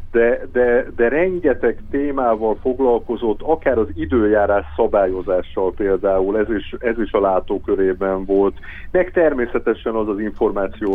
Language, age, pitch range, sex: Hungarian, 50-69, 95-120 Hz, male